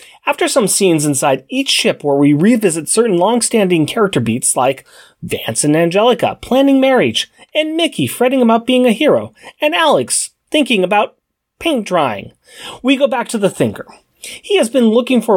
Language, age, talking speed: English, 30-49, 170 wpm